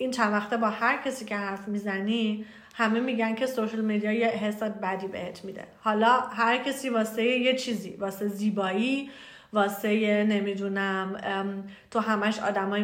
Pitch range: 200-235 Hz